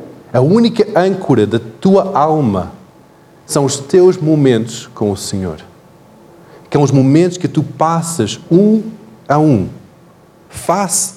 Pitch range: 125-165 Hz